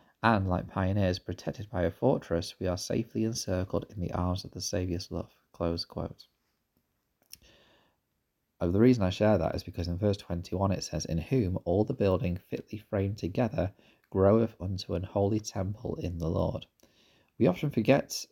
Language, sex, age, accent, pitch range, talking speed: English, male, 30-49, British, 85-105 Hz, 170 wpm